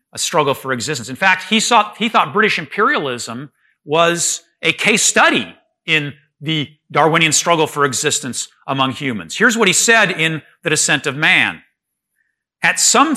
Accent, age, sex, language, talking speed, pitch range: American, 50-69, male, English, 160 wpm, 145-205 Hz